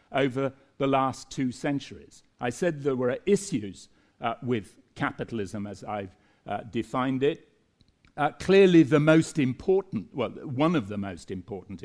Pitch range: 110-135 Hz